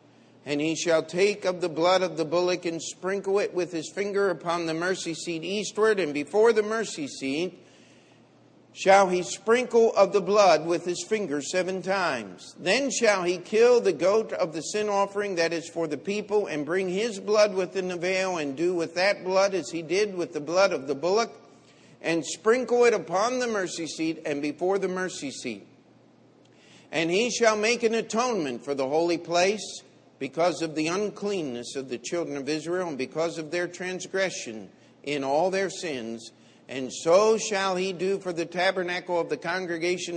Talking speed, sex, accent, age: 185 wpm, male, American, 50-69